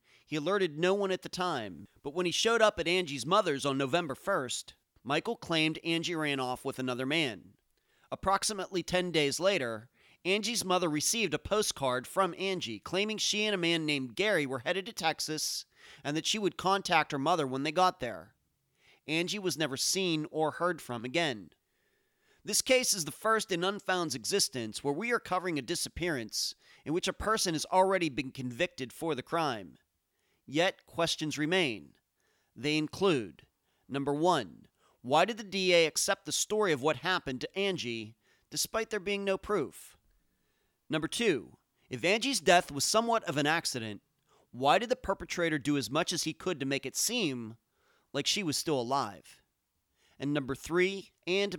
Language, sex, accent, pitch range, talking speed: English, male, American, 140-190 Hz, 175 wpm